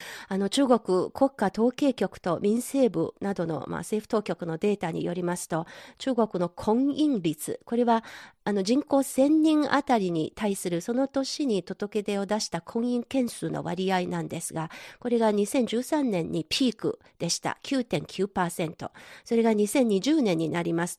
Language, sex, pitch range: Japanese, female, 180-265 Hz